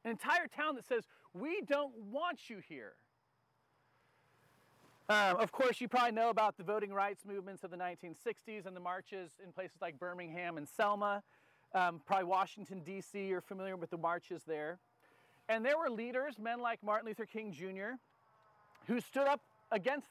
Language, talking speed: English, 170 wpm